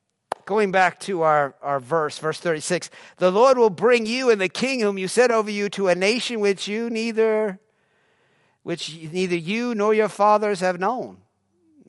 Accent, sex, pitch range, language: American, male, 155-230 Hz, English